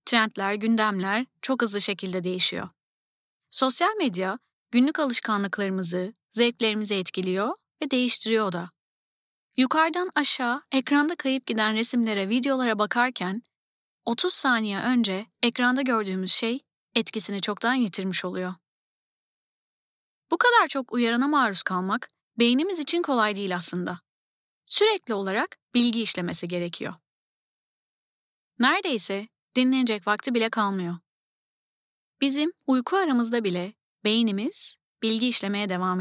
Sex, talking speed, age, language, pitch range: female, 105 wpm, 30-49, Turkish, 205-275 Hz